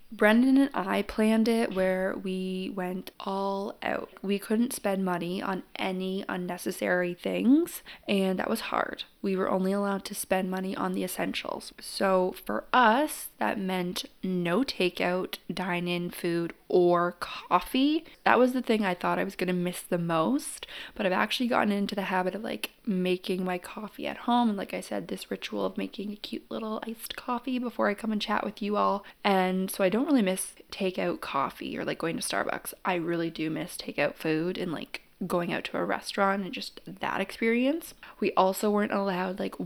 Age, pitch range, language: 20-39, 180-225 Hz, English